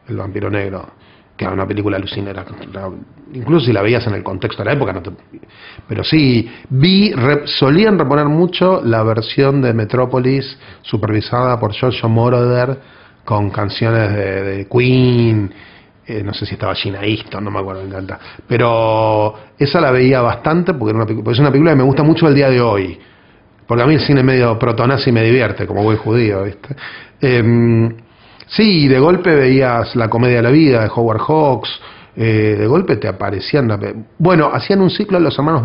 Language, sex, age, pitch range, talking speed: English, male, 30-49, 105-145 Hz, 185 wpm